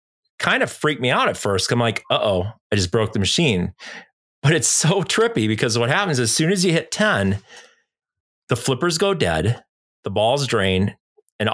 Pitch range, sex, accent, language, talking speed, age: 105-145 Hz, male, American, English, 185 wpm, 40-59